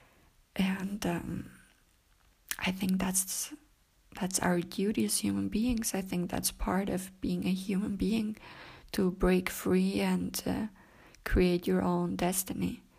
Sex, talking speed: female, 135 wpm